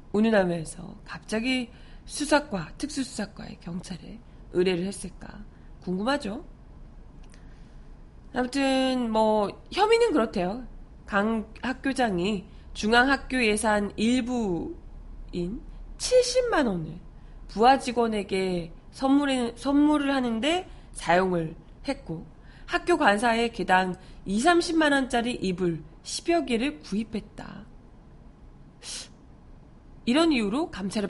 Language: Korean